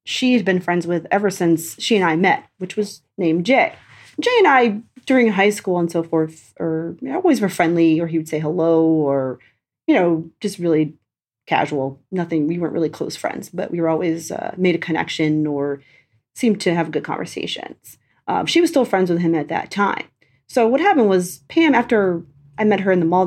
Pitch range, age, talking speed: 165-230 Hz, 30-49, 205 wpm